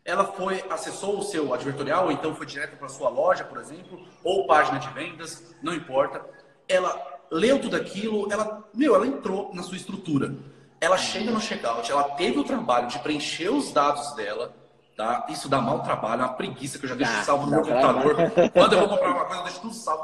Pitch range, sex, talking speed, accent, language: 145-200 Hz, male, 220 wpm, Brazilian, Portuguese